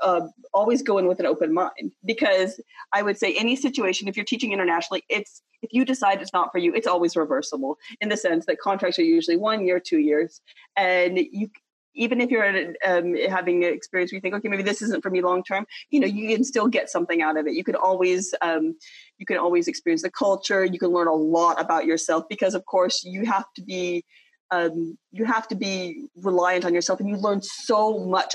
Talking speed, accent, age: 225 wpm, American, 30-49